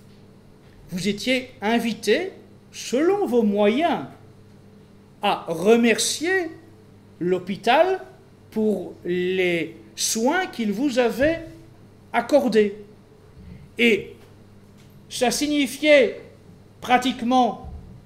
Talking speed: 65 wpm